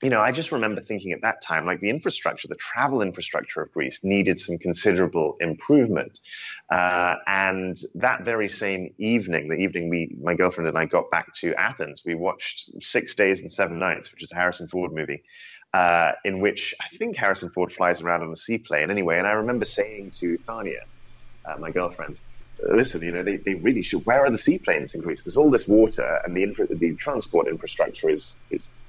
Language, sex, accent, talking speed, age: English, male, British, 205 wpm, 30-49